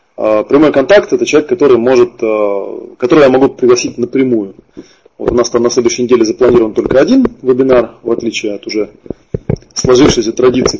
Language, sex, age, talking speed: Russian, male, 20-39, 165 wpm